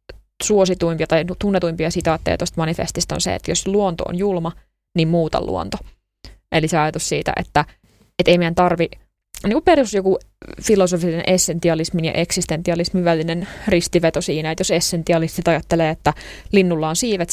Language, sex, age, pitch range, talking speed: Finnish, female, 20-39, 160-180 Hz, 150 wpm